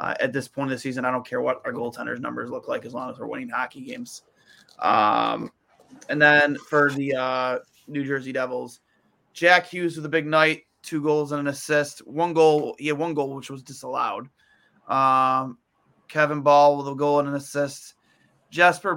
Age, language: 20-39, English